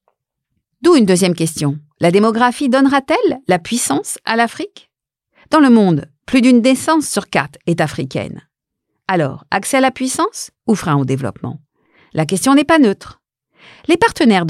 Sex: female